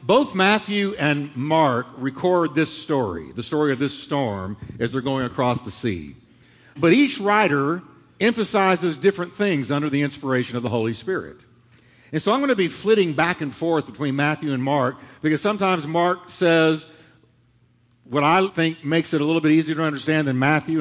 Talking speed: 180 wpm